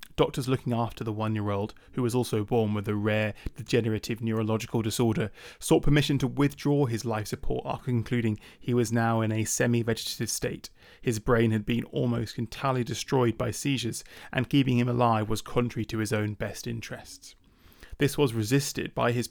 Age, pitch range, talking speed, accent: 20-39, 115-125 Hz, 175 wpm, British